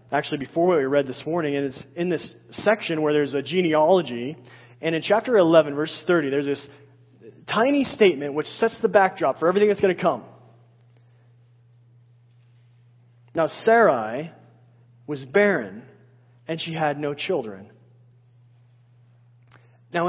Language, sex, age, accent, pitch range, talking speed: English, male, 30-49, American, 120-165 Hz, 135 wpm